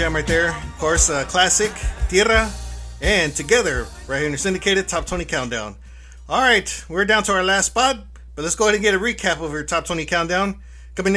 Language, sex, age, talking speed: English, male, 30-49, 215 wpm